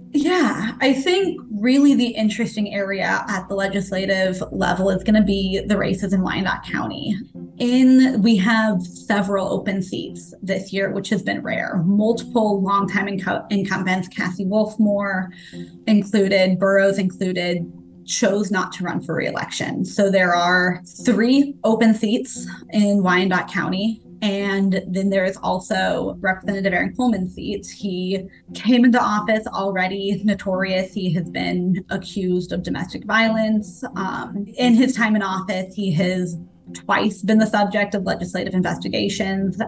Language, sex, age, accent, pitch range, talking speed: English, female, 20-39, American, 185-215 Hz, 140 wpm